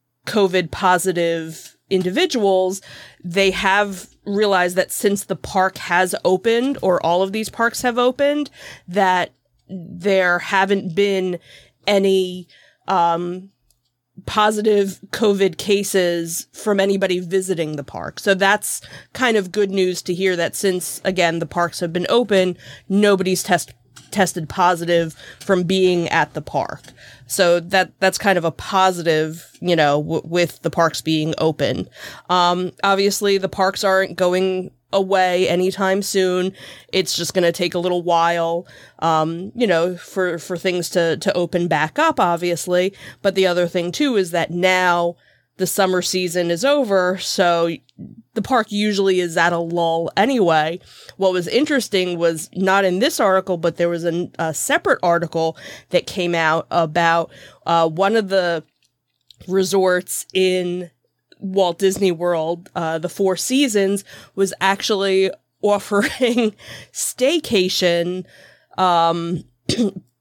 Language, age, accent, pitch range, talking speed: English, 20-39, American, 170-195 Hz, 140 wpm